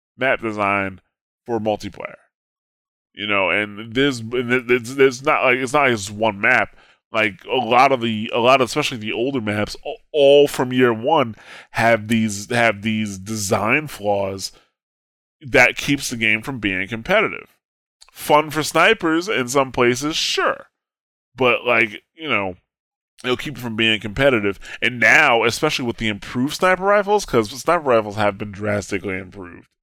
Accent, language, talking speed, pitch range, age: American, English, 155 wpm, 100-125 Hz, 20-39